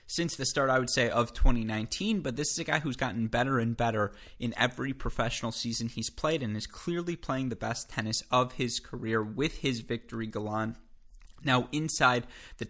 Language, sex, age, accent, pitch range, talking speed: English, male, 20-39, American, 110-130 Hz, 195 wpm